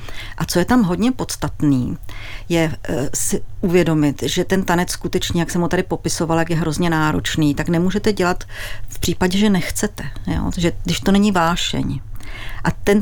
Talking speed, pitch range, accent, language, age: 170 wpm, 145-175 Hz, native, Czech, 50-69